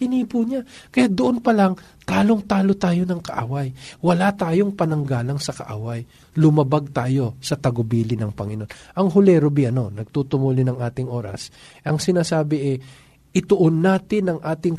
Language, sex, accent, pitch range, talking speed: Filipino, male, native, 135-170 Hz, 140 wpm